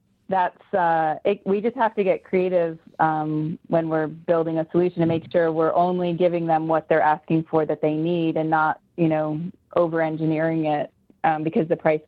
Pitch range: 155-175 Hz